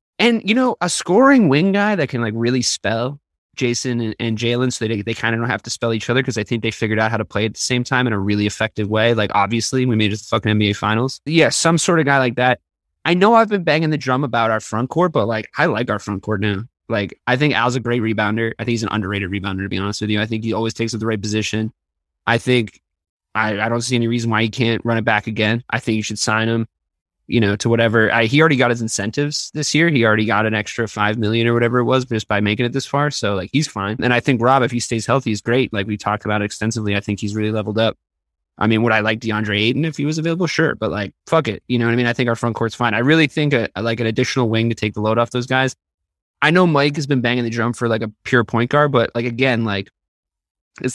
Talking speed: 290 wpm